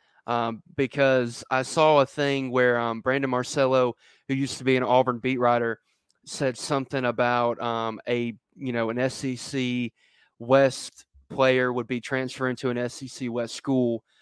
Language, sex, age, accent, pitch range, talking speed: English, male, 20-39, American, 120-145 Hz, 155 wpm